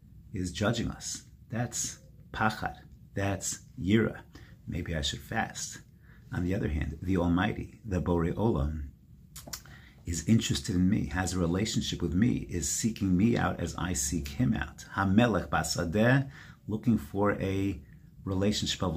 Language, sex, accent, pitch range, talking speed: English, male, American, 80-100 Hz, 140 wpm